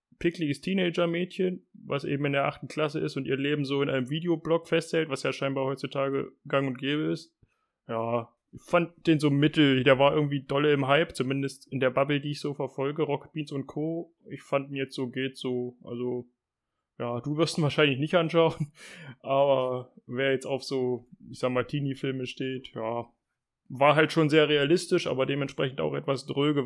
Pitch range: 135-160 Hz